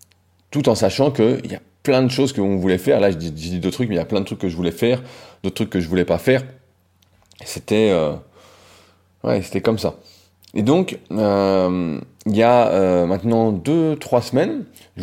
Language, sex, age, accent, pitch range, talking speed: French, male, 30-49, French, 90-120 Hz, 215 wpm